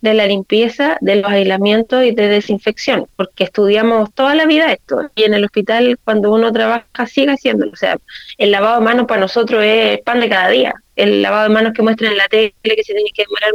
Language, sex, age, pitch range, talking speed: Spanish, female, 20-39, 215-255 Hz, 225 wpm